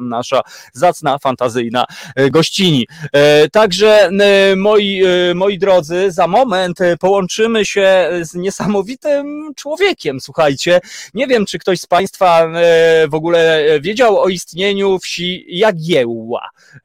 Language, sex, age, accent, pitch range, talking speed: Polish, male, 30-49, native, 145-205 Hz, 105 wpm